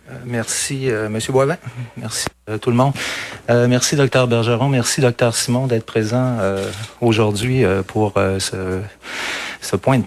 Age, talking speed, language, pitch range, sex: 40-59, 160 wpm, French, 105-125 Hz, male